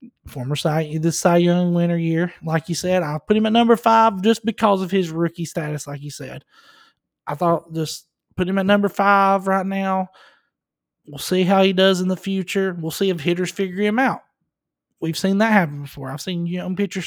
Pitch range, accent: 150-195 Hz, American